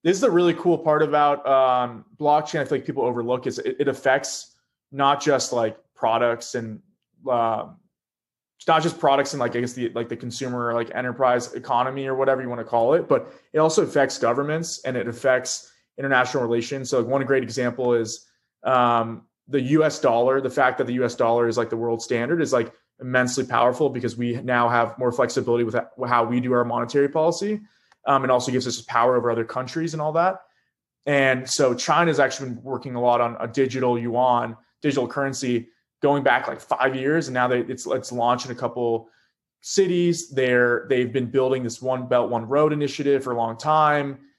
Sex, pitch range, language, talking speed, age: male, 120-140 Hz, English, 195 wpm, 20-39